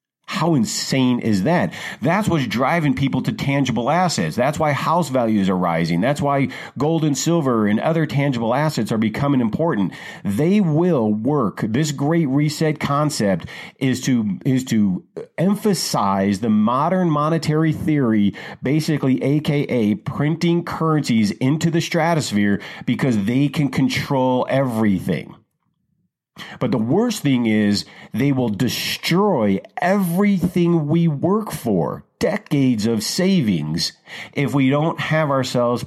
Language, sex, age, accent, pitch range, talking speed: English, male, 40-59, American, 125-170 Hz, 130 wpm